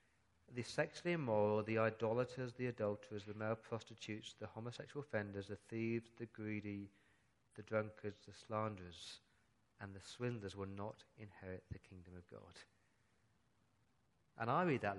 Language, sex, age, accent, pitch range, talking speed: English, male, 40-59, British, 105-140 Hz, 140 wpm